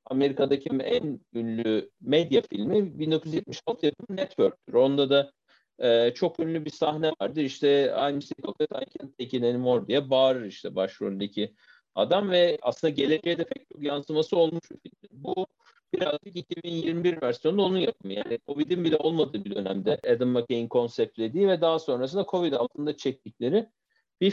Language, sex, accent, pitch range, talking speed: Turkish, male, native, 130-170 Hz, 140 wpm